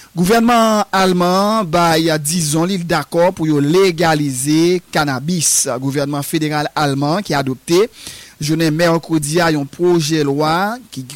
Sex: male